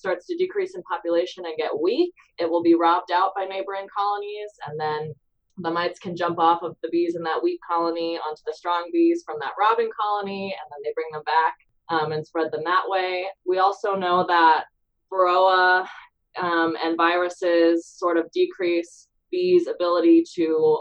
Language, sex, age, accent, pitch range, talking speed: English, female, 20-39, American, 165-205 Hz, 185 wpm